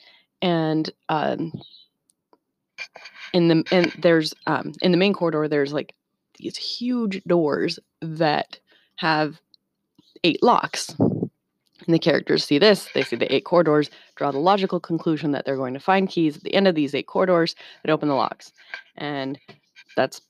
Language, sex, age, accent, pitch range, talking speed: English, female, 20-39, American, 155-190 Hz, 155 wpm